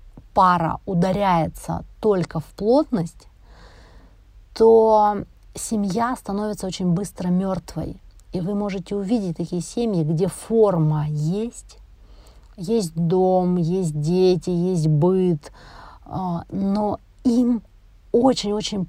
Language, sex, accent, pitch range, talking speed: Russian, female, native, 170-205 Hz, 90 wpm